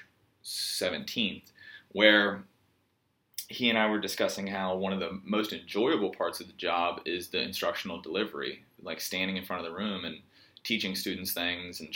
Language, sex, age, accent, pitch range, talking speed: English, male, 20-39, American, 95-110 Hz, 165 wpm